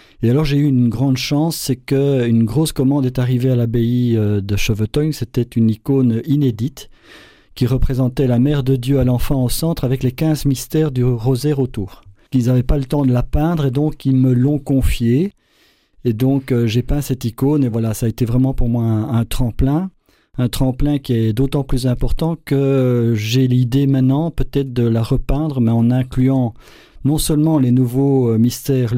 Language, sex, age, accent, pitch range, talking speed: French, male, 50-69, French, 120-140 Hz, 190 wpm